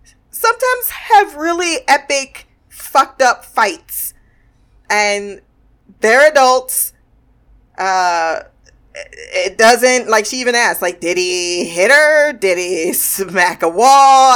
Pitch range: 175-255 Hz